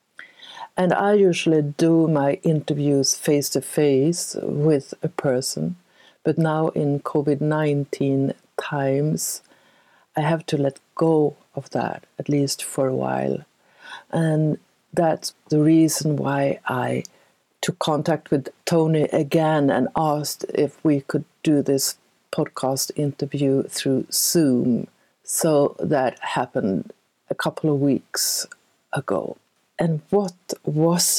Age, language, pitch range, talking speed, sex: 60-79, Swedish, 140-160 Hz, 115 wpm, female